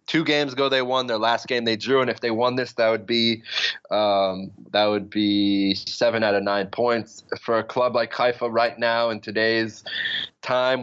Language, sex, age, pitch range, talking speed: English, male, 20-39, 95-115 Hz, 205 wpm